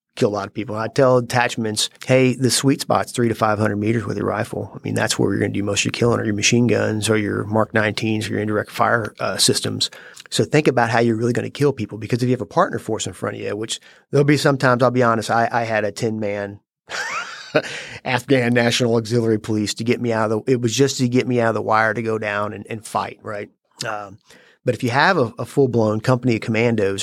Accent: American